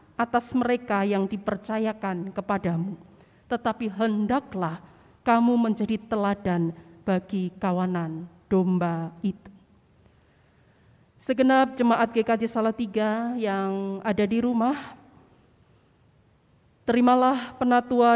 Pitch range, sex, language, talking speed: 195-240 Hz, female, Malay, 80 wpm